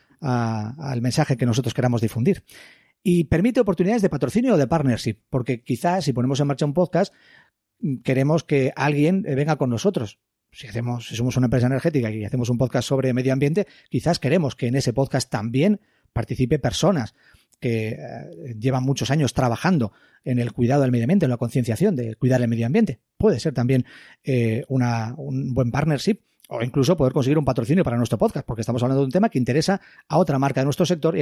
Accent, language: Spanish, Spanish